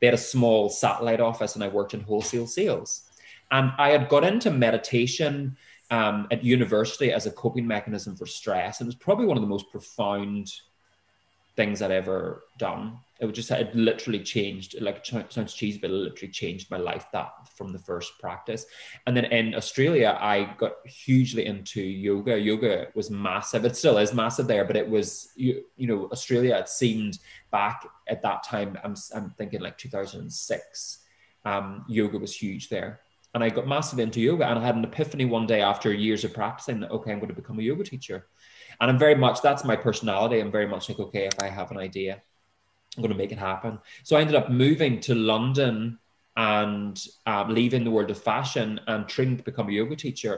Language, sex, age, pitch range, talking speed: English, male, 20-39, 105-125 Hz, 205 wpm